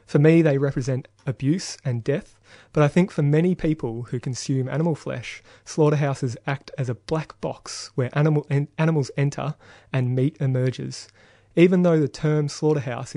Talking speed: 155 wpm